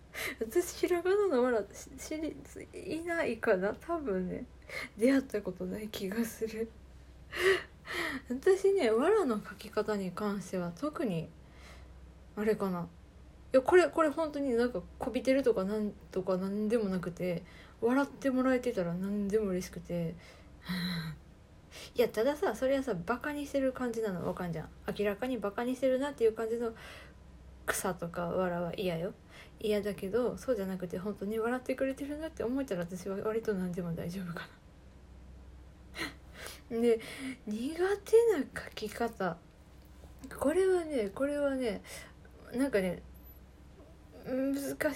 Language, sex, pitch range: Japanese, female, 180-265 Hz